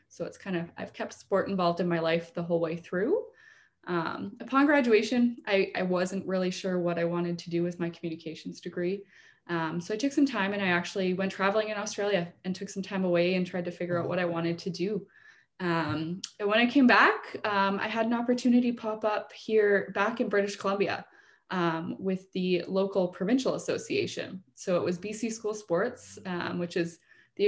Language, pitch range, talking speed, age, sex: English, 175-205 Hz, 205 wpm, 20-39, female